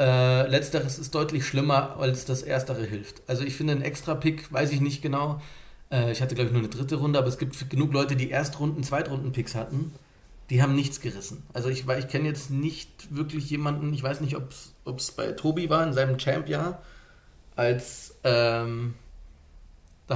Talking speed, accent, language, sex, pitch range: 190 wpm, German, German, male, 120-145 Hz